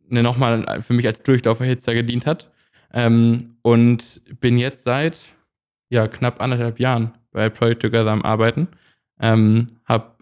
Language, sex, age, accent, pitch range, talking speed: German, male, 20-39, German, 115-130 Hz, 135 wpm